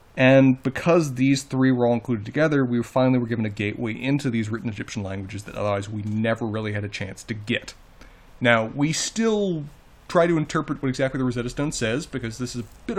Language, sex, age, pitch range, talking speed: English, male, 30-49, 125-170 Hz, 210 wpm